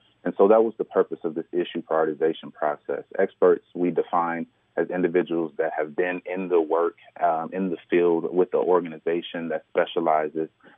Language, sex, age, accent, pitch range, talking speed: English, male, 30-49, American, 80-110 Hz, 175 wpm